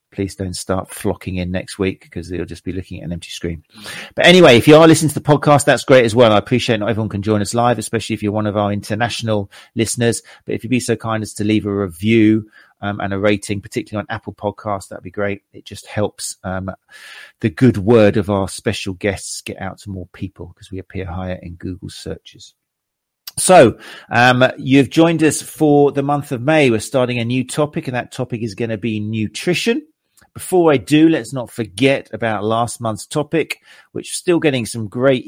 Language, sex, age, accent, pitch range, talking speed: English, male, 40-59, British, 100-120 Hz, 220 wpm